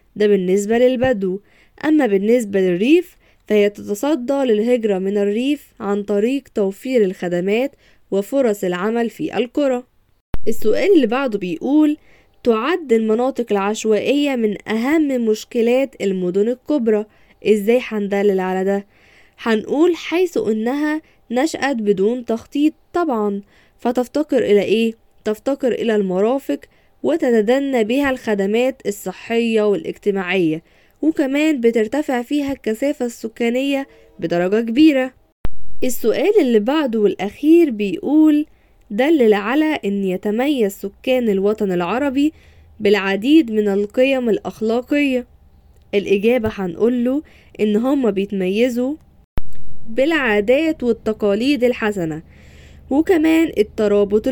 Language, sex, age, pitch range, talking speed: Arabic, female, 10-29, 205-275 Hz, 95 wpm